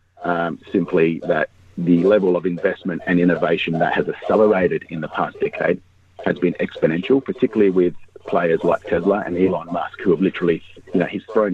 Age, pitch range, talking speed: 40-59, 90-115 Hz, 175 wpm